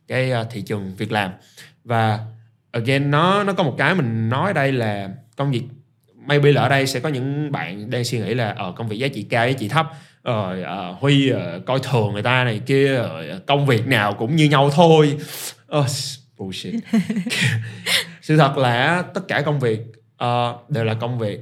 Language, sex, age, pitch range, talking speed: Vietnamese, male, 20-39, 115-145 Hz, 205 wpm